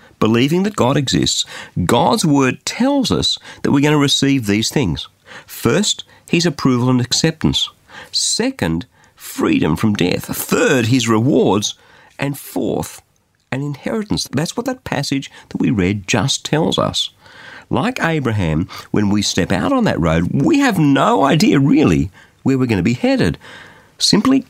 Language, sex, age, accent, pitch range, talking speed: English, male, 50-69, Australian, 100-155 Hz, 150 wpm